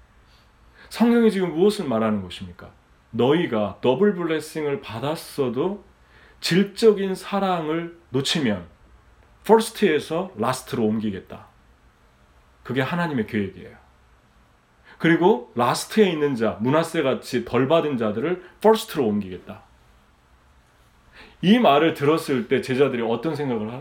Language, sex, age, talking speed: English, male, 40-59, 90 wpm